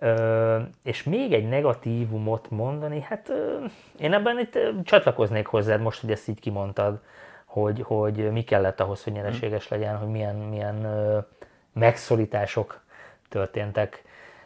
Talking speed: 135 wpm